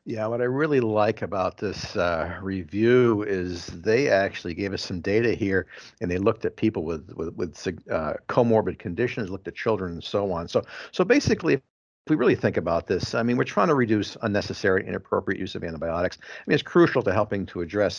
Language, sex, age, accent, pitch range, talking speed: English, male, 50-69, American, 100-135 Hz, 205 wpm